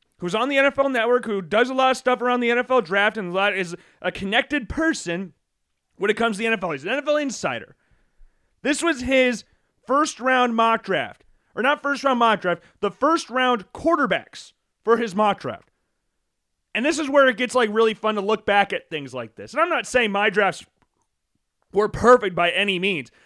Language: English